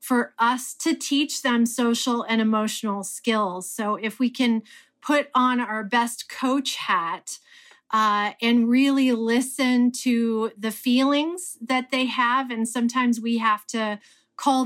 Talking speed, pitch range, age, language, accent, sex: 145 wpm, 225-285 Hz, 40-59, English, American, female